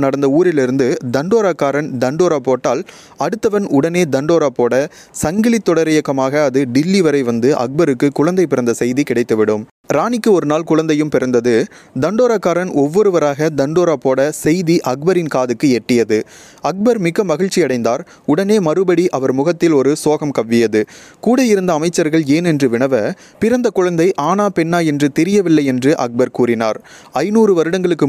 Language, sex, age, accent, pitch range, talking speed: Tamil, male, 20-39, native, 130-175 Hz, 130 wpm